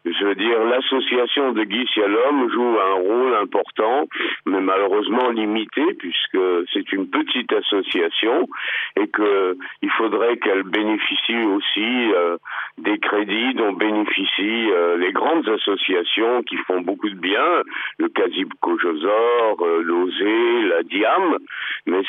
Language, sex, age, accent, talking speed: French, male, 50-69, French, 130 wpm